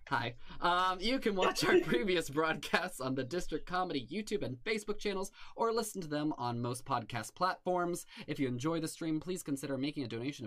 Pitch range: 130-165 Hz